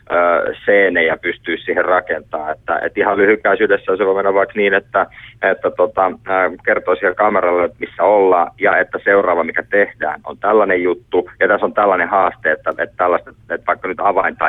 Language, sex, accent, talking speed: Finnish, male, native, 170 wpm